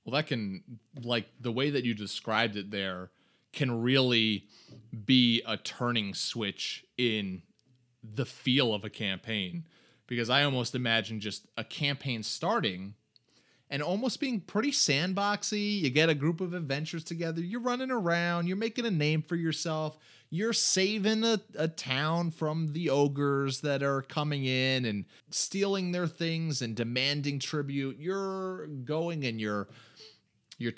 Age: 30-49